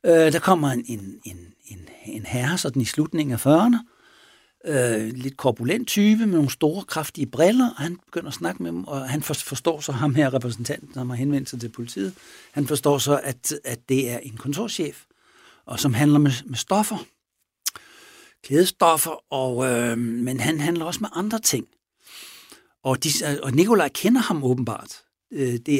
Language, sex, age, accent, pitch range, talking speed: Danish, male, 60-79, native, 125-165 Hz, 175 wpm